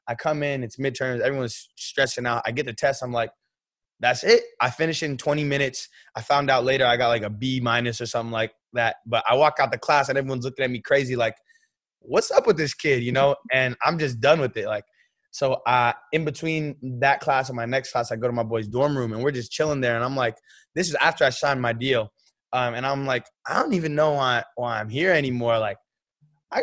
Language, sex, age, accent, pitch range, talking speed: English, male, 20-39, American, 125-155 Hz, 245 wpm